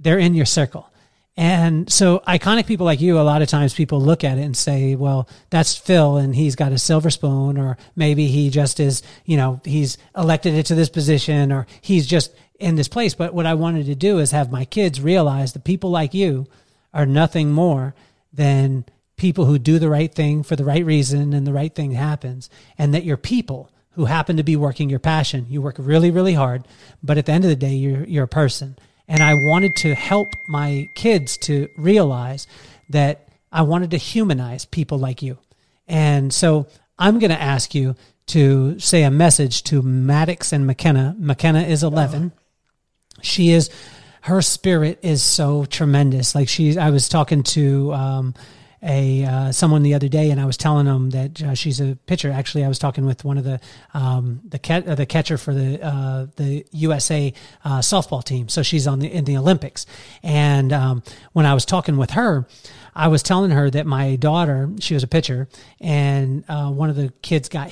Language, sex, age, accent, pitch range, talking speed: English, male, 40-59, American, 135-160 Hz, 200 wpm